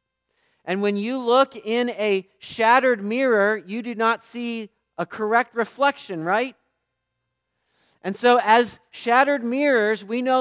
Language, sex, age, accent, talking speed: English, male, 40-59, American, 135 wpm